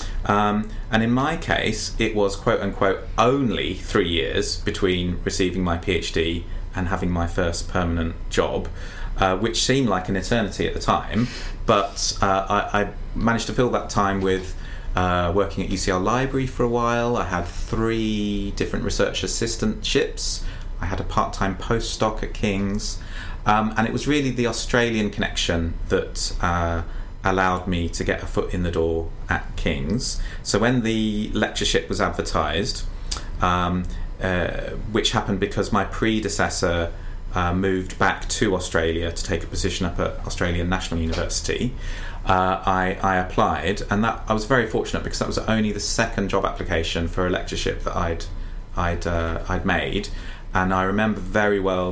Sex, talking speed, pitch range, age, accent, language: male, 165 wpm, 90-105 Hz, 30-49, British, English